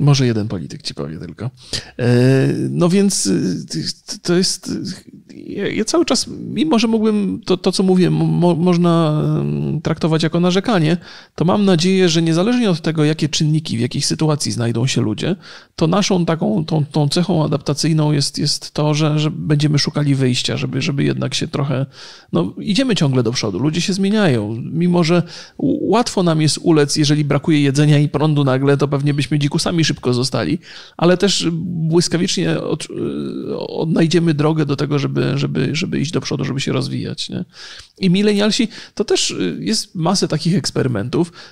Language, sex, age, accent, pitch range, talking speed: Polish, male, 40-59, native, 145-175 Hz, 160 wpm